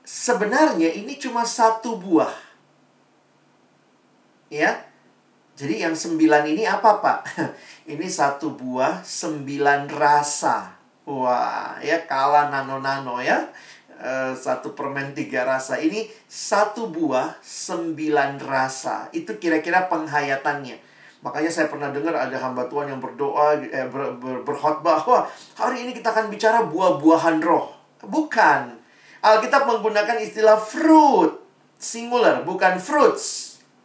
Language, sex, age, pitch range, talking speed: Indonesian, male, 40-59, 145-235 Hz, 105 wpm